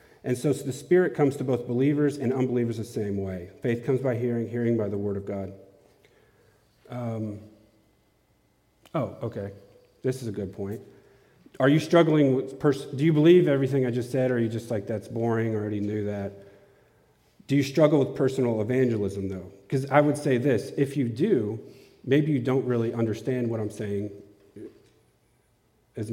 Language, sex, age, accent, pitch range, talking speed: English, male, 40-59, American, 110-140 Hz, 175 wpm